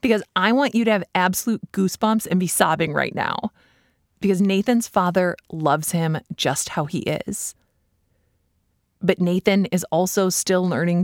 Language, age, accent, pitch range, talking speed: English, 20-39, American, 155-200 Hz, 150 wpm